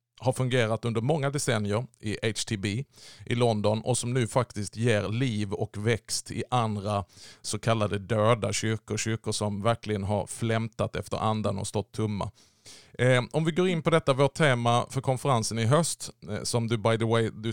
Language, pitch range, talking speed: Swedish, 110-130 Hz, 180 wpm